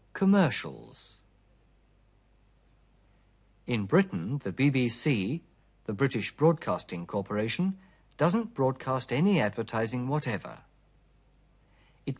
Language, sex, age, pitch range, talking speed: German, male, 50-69, 105-165 Hz, 75 wpm